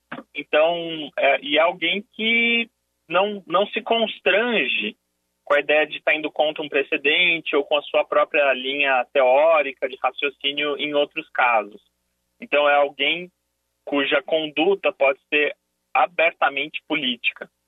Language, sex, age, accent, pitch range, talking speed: Portuguese, male, 20-39, Brazilian, 110-160 Hz, 130 wpm